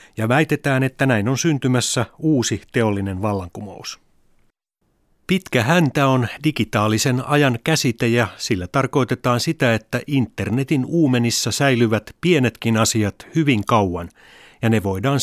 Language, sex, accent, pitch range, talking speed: Finnish, male, native, 110-135 Hz, 115 wpm